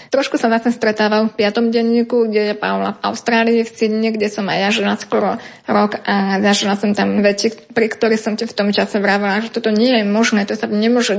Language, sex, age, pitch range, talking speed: Slovak, female, 20-39, 205-230 Hz, 225 wpm